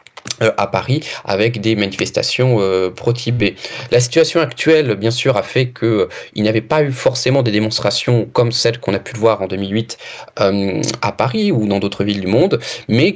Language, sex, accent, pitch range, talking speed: French, male, French, 110-140 Hz, 185 wpm